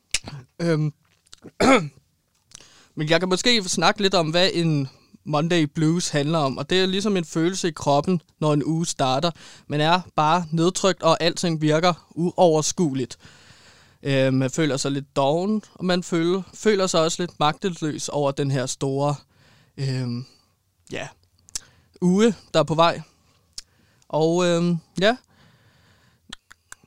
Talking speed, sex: 125 wpm, male